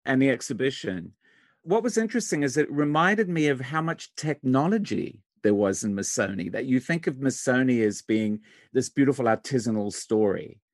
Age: 50-69